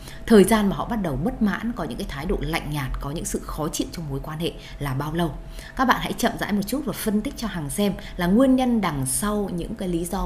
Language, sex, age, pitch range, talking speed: Vietnamese, female, 20-39, 145-205 Hz, 285 wpm